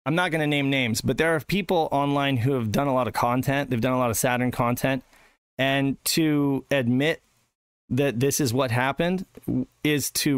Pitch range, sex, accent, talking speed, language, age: 110-135 Hz, male, American, 200 wpm, English, 30-49